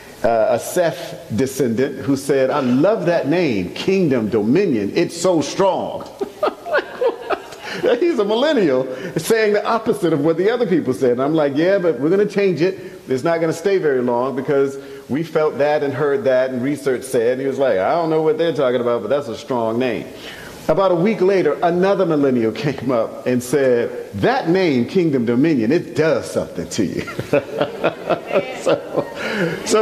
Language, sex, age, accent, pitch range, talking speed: English, male, 50-69, American, 135-200 Hz, 180 wpm